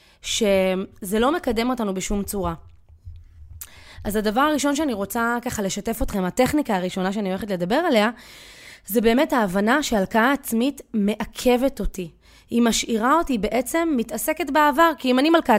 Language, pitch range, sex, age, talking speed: Hebrew, 200-265 Hz, female, 20-39, 140 wpm